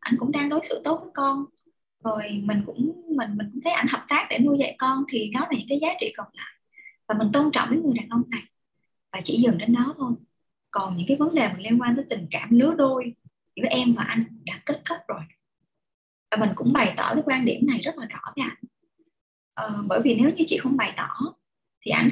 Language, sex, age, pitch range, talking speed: Vietnamese, male, 20-39, 230-295 Hz, 245 wpm